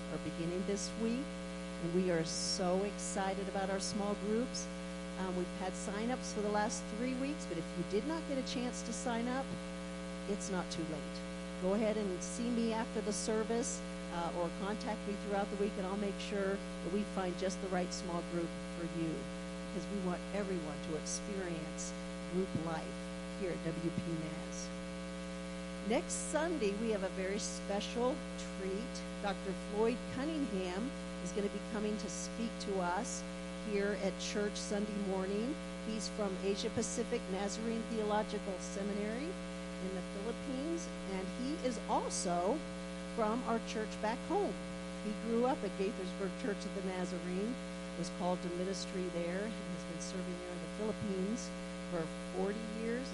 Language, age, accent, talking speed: English, 50-69, American, 165 wpm